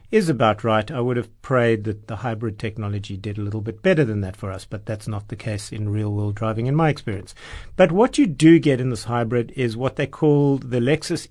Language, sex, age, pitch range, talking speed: English, male, 50-69, 120-160 Hz, 240 wpm